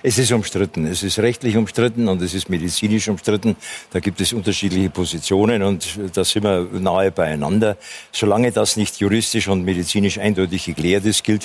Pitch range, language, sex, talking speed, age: 95-110 Hz, German, male, 175 wpm, 50-69